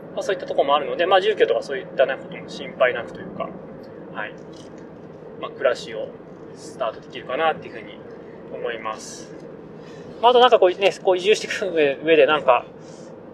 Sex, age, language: male, 20-39, Japanese